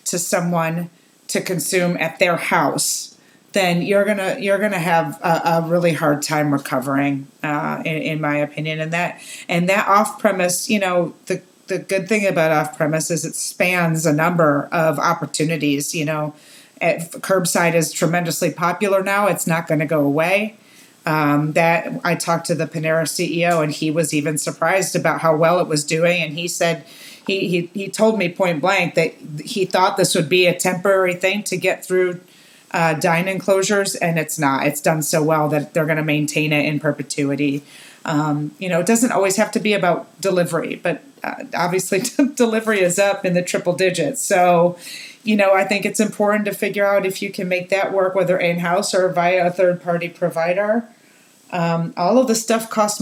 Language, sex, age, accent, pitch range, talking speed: English, female, 40-59, American, 160-195 Hz, 190 wpm